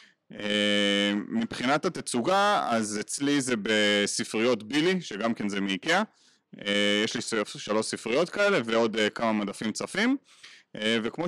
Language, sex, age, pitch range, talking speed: Hebrew, male, 30-49, 105-145 Hz, 135 wpm